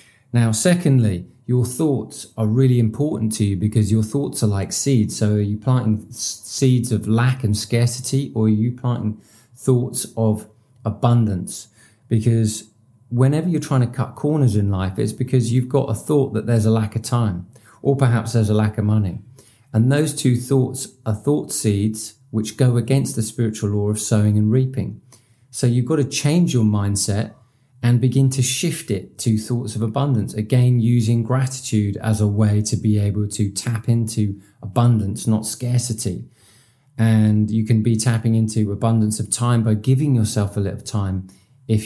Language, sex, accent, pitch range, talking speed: English, male, British, 110-125 Hz, 175 wpm